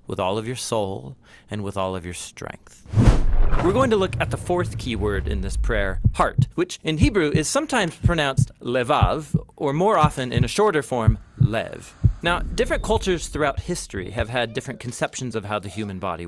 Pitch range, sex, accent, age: 110-160 Hz, male, American, 30-49